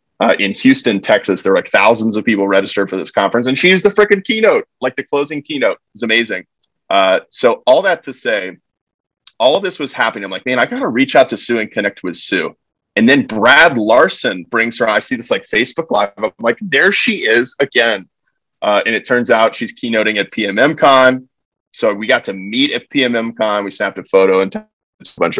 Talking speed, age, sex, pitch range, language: 215 wpm, 30-49, male, 100-150 Hz, English